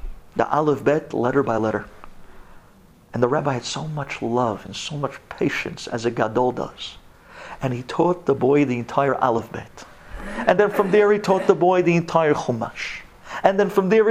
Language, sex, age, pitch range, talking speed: English, male, 50-69, 125-205 Hz, 185 wpm